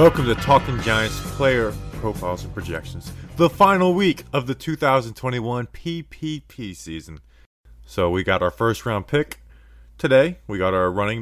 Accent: American